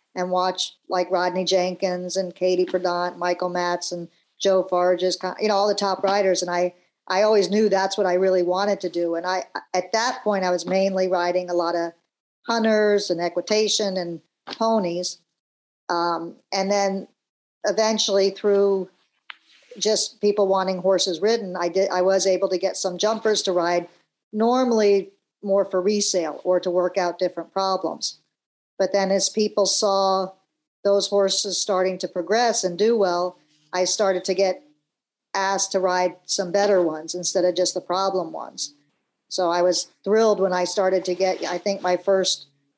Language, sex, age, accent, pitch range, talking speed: English, male, 50-69, American, 180-200 Hz, 170 wpm